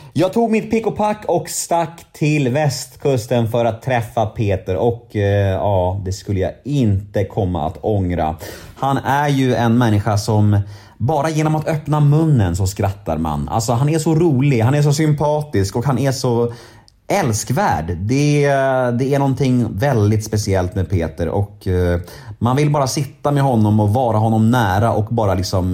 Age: 30-49